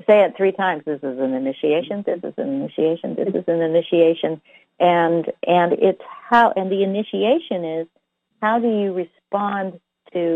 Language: English